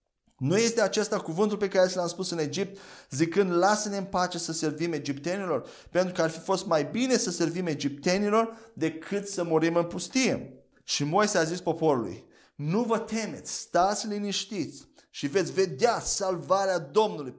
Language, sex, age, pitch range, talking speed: Romanian, male, 30-49, 160-215 Hz, 160 wpm